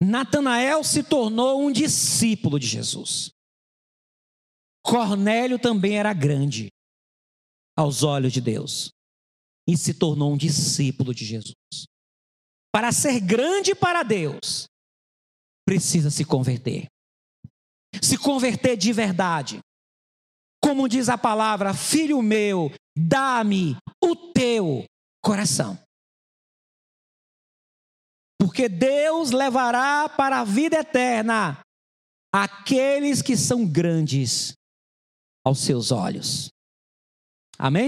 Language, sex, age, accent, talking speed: Portuguese, male, 40-59, Brazilian, 95 wpm